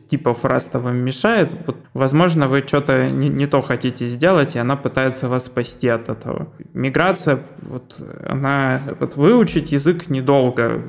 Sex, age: male, 20-39